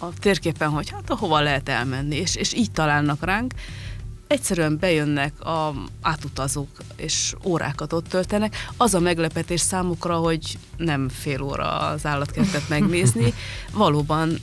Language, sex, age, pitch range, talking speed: Hungarian, female, 30-49, 140-175 Hz, 135 wpm